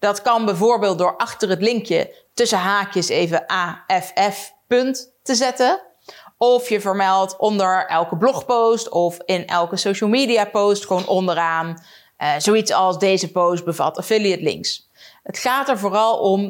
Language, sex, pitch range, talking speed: Dutch, female, 185-240 Hz, 150 wpm